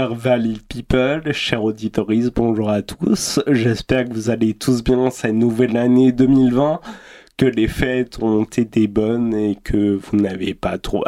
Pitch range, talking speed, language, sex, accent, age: 115-140 Hz, 155 wpm, French, male, French, 20-39